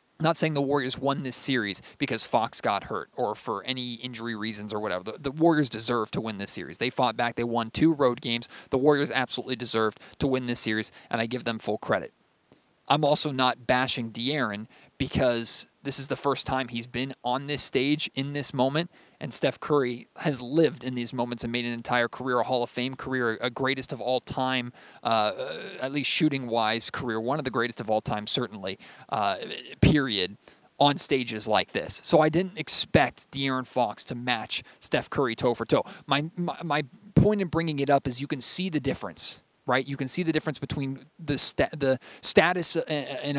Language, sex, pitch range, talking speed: English, male, 120-145 Hz, 200 wpm